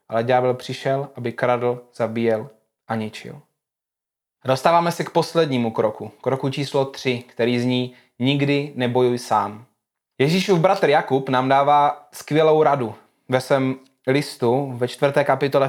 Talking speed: 130 wpm